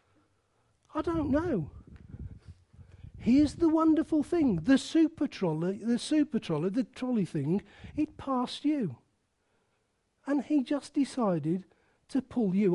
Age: 40-59